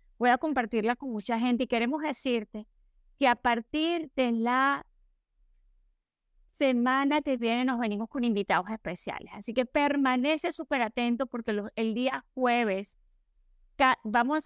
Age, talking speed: 30-49, 135 wpm